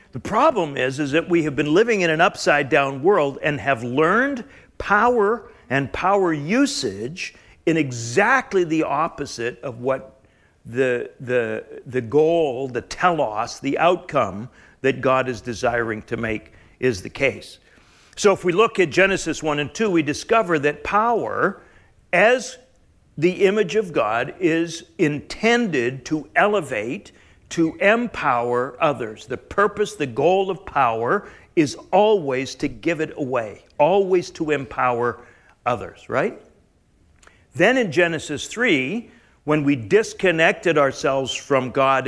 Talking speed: 135 wpm